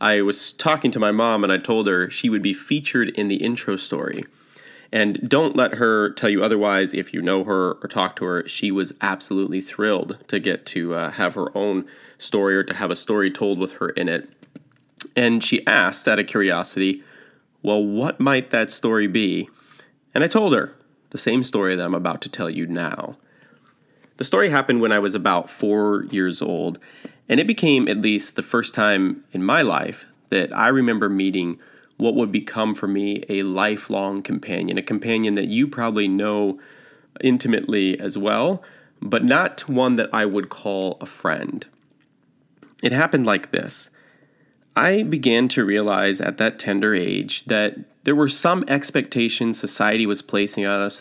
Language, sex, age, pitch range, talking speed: English, male, 20-39, 95-120 Hz, 180 wpm